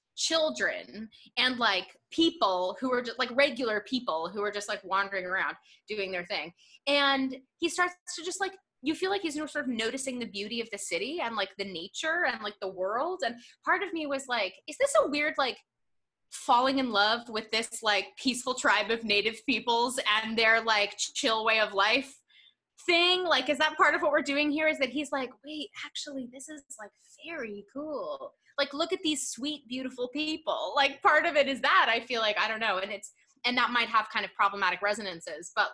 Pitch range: 205-295 Hz